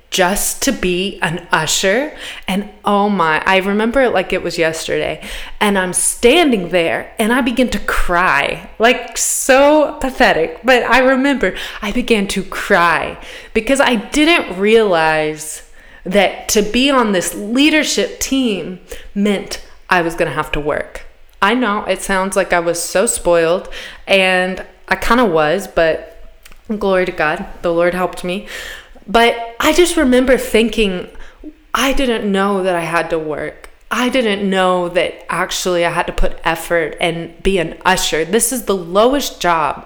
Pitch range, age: 175-235 Hz, 20-39